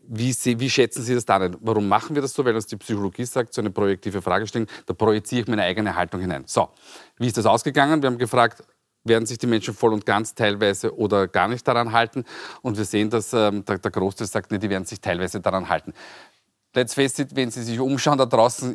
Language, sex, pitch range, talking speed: German, male, 110-140 Hz, 240 wpm